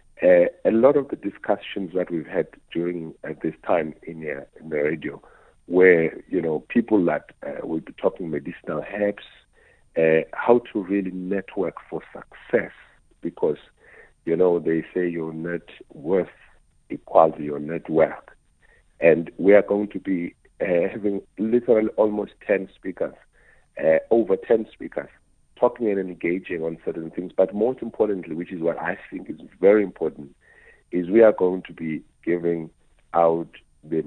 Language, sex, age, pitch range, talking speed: English, male, 50-69, 80-105 Hz, 155 wpm